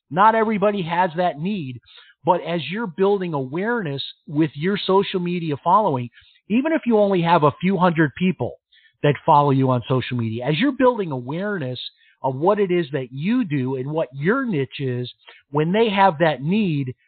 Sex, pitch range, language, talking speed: male, 140-200 Hz, English, 180 wpm